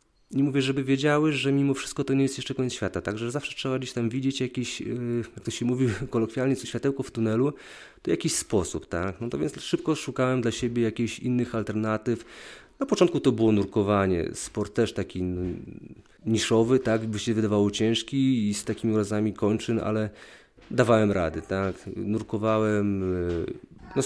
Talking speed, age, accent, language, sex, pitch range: 165 wpm, 30-49, native, Polish, male, 100-130 Hz